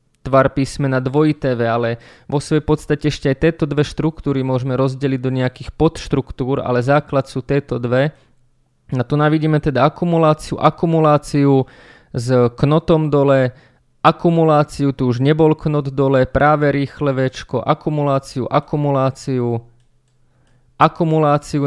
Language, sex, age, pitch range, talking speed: Slovak, male, 20-39, 125-145 Hz, 120 wpm